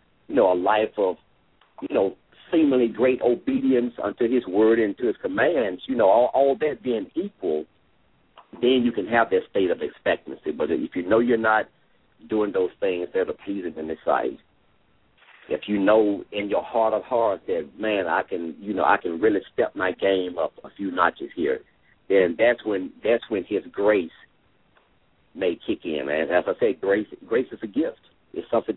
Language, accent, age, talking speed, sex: English, American, 50-69, 195 wpm, male